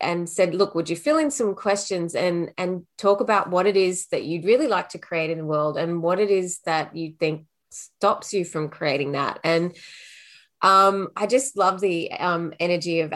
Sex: female